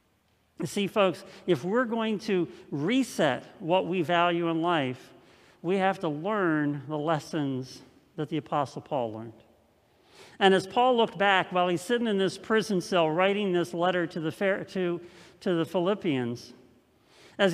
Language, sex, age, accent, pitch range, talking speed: English, male, 50-69, American, 170-220 Hz, 155 wpm